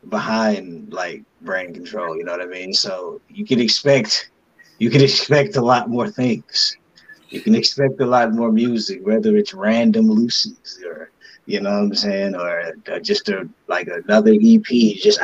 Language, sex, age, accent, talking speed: English, male, 20-39, American, 175 wpm